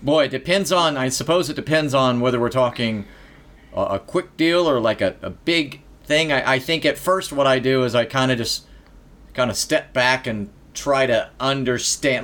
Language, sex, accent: English, male, American